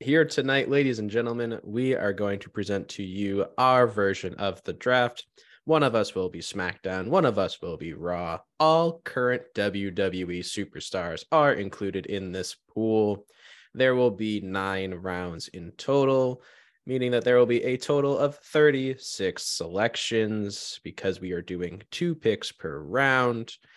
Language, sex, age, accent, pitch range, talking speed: English, male, 20-39, American, 95-130 Hz, 160 wpm